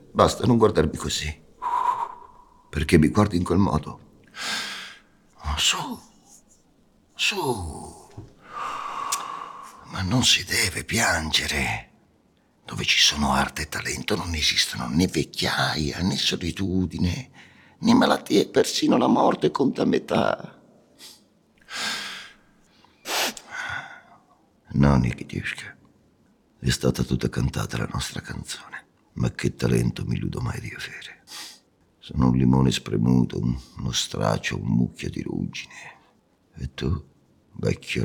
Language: Italian